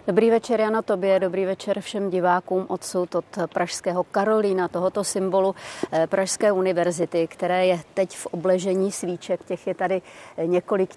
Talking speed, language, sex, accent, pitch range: 140 wpm, Czech, female, native, 175-195 Hz